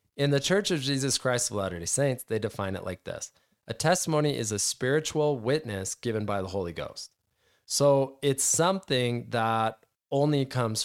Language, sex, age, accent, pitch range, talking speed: English, male, 20-39, American, 105-140 Hz, 170 wpm